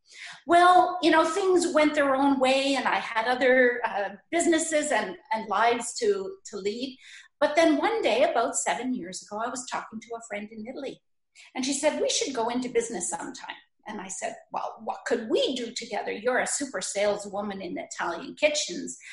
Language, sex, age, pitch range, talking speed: English, female, 50-69, 230-325 Hz, 190 wpm